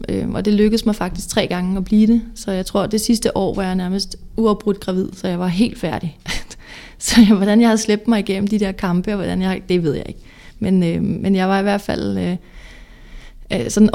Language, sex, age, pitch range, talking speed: Danish, female, 30-49, 190-215 Hz, 230 wpm